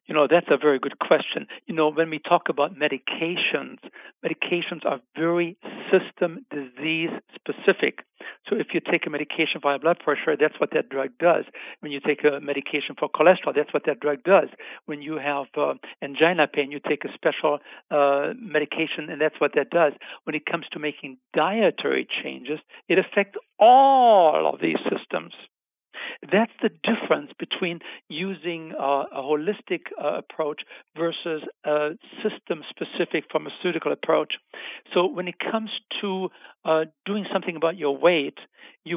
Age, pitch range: 60-79, 150-180 Hz